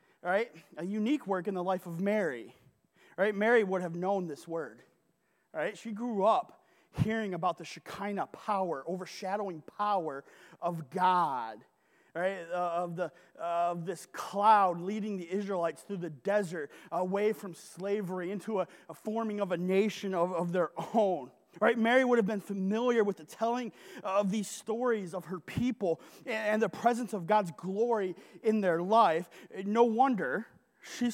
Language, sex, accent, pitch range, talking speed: English, male, American, 180-220 Hz, 165 wpm